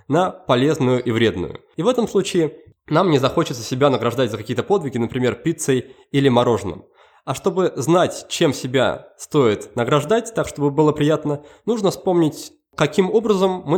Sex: male